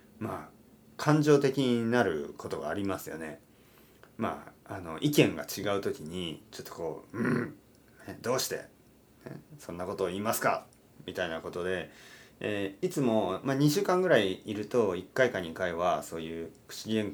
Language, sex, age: Japanese, male, 30-49